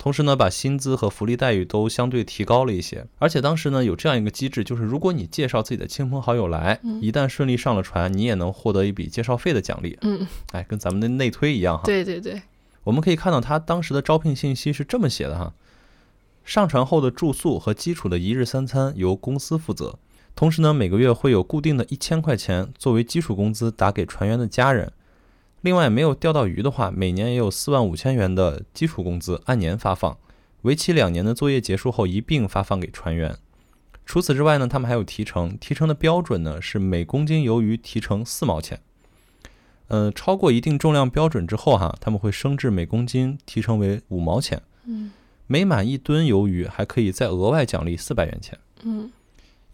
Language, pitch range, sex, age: Chinese, 100-150 Hz, male, 20-39